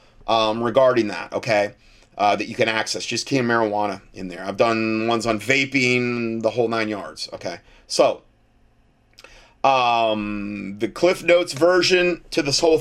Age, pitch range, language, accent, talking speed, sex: 30-49, 110-140 Hz, English, American, 155 wpm, male